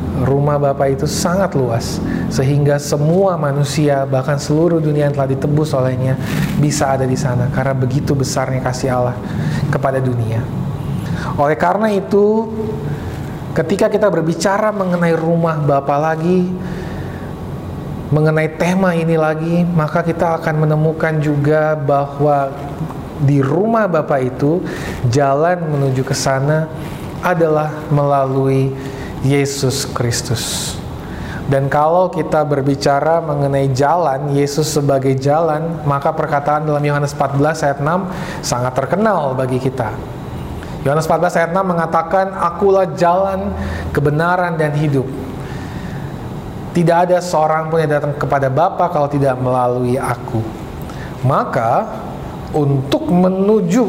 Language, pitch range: Indonesian, 140-165 Hz